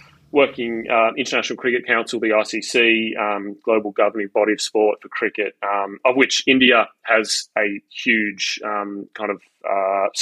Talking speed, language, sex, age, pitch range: 155 wpm, English, male, 30-49, 105-115 Hz